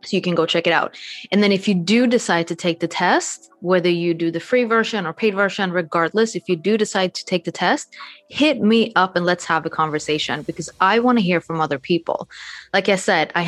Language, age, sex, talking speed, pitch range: English, 20-39, female, 245 wpm, 165-195 Hz